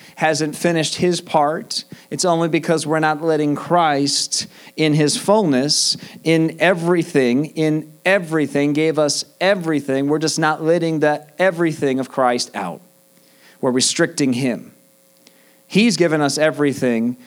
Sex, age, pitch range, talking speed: male, 40-59, 130-160 Hz, 130 wpm